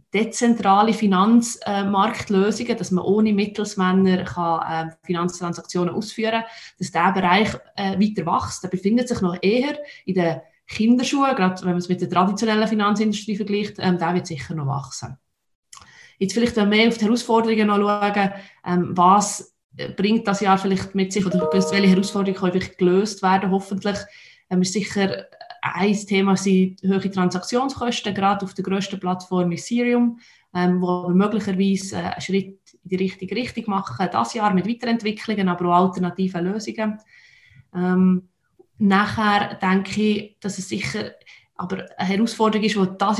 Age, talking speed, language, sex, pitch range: 20-39, 140 wpm, German, female, 185-215 Hz